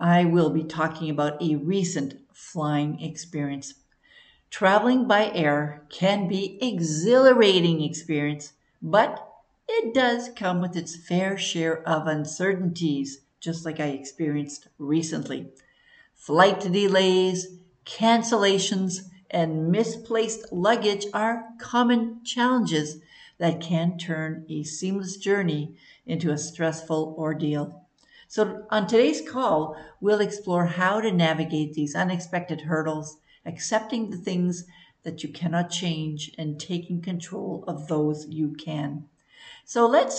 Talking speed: 120 wpm